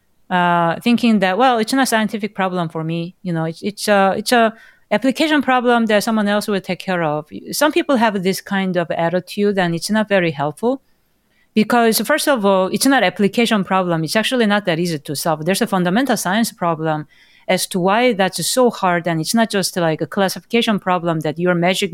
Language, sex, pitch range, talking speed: English, female, 175-225 Hz, 210 wpm